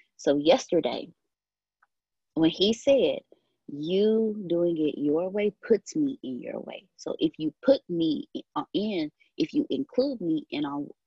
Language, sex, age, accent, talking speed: English, female, 20-39, American, 145 wpm